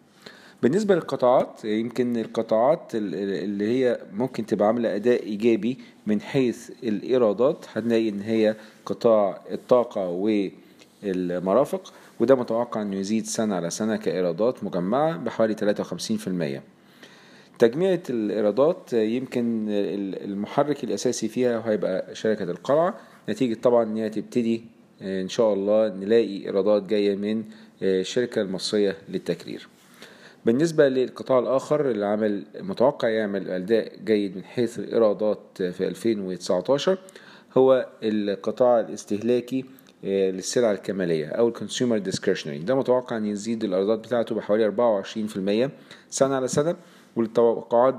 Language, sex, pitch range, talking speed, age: Arabic, male, 105-120 Hz, 115 wpm, 40-59